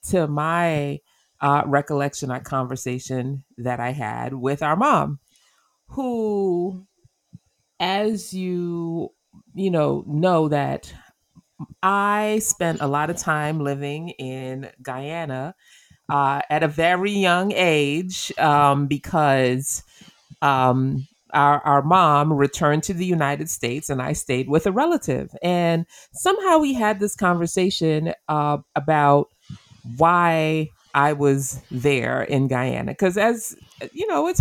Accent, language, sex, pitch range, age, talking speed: American, English, female, 140-180 Hz, 30-49, 120 wpm